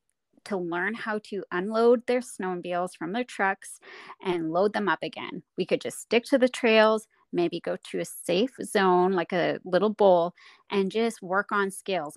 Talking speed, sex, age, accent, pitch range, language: 185 wpm, female, 20-39, American, 175-220 Hz, English